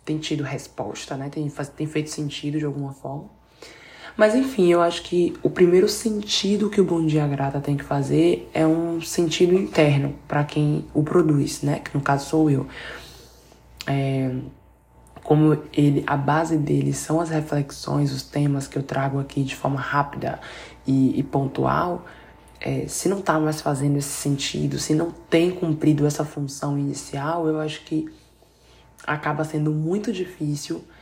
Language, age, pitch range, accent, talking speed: Portuguese, 20-39, 140-160 Hz, Brazilian, 165 wpm